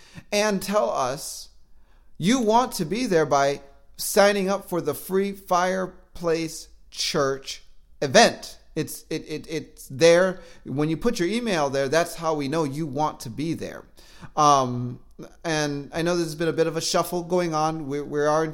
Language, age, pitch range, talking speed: English, 40-59, 150-190 Hz, 180 wpm